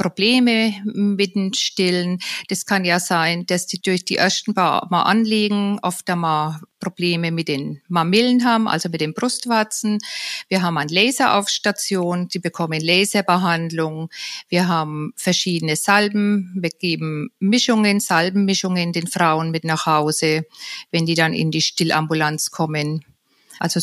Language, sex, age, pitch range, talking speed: German, female, 50-69, 170-205 Hz, 140 wpm